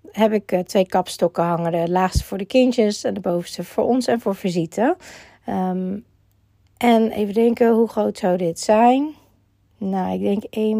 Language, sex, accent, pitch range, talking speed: Dutch, female, Dutch, 185-240 Hz, 170 wpm